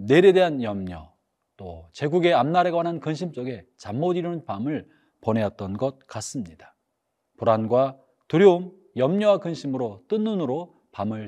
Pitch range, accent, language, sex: 115-185 Hz, native, Korean, male